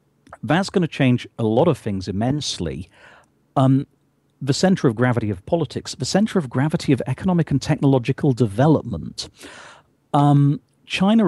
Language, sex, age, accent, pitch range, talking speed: English, male, 40-59, British, 105-145 Hz, 145 wpm